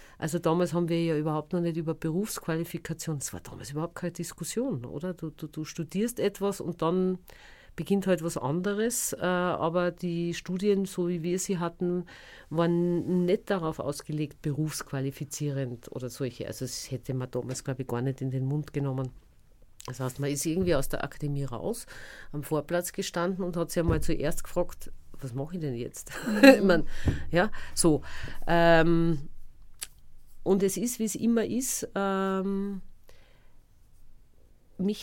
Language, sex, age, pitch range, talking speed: English, female, 40-59, 150-185 Hz, 165 wpm